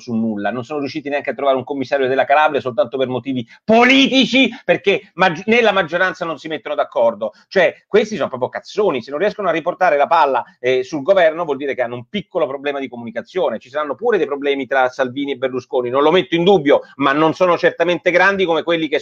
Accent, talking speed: native, 220 wpm